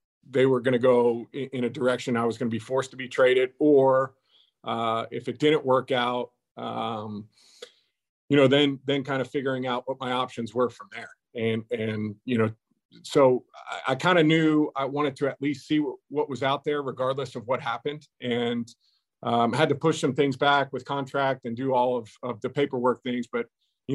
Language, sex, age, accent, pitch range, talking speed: English, male, 40-59, American, 120-135 Hz, 210 wpm